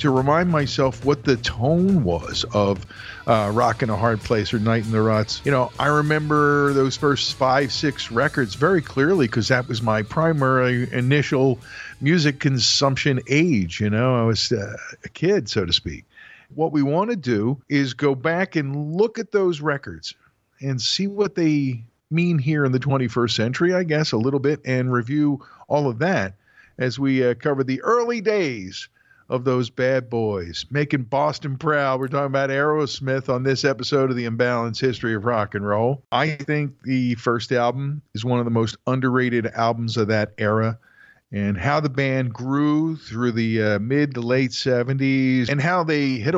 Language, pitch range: English, 115-145 Hz